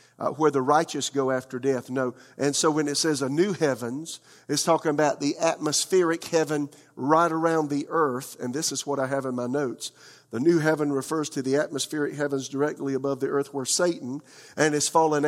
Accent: American